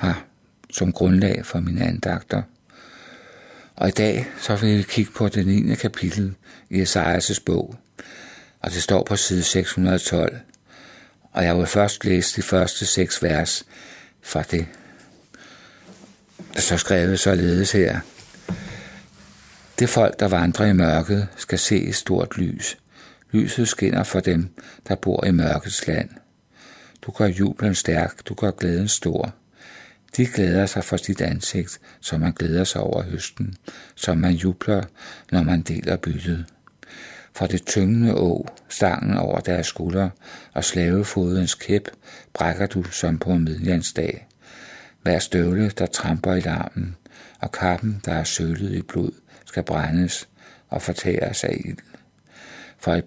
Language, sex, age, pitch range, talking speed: Danish, male, 60-79, 85-100 Hz, 145 wpm